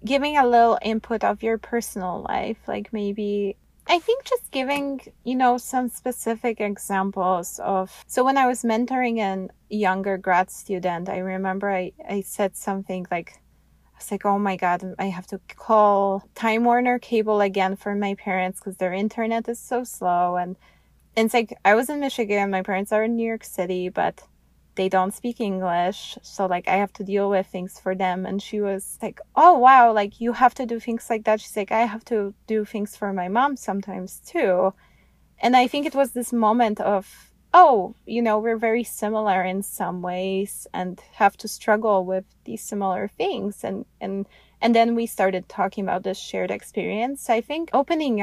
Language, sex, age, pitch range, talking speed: English, female, 20-39, 190-235 Hz, 190 wpm